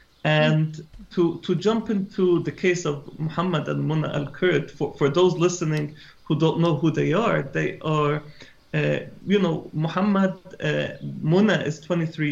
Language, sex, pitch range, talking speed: English, male, 145-165 Hz, 155 wpm